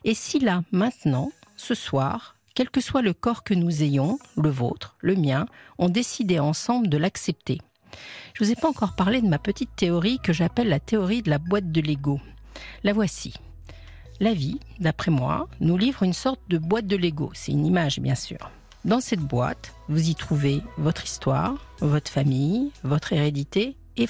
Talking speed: 185 wpm